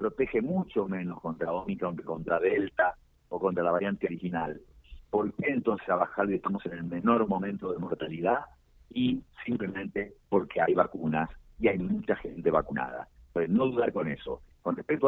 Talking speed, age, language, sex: 165 wpm, 50-69, Spanish, male